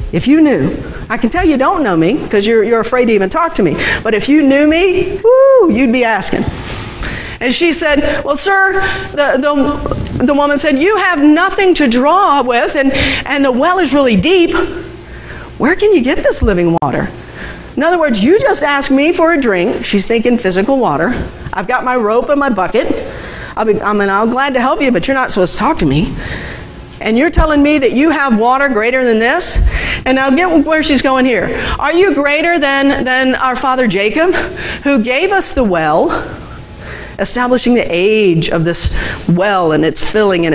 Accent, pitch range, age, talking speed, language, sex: American, 230-315 Hz, 50-69, 200 wpm, English, female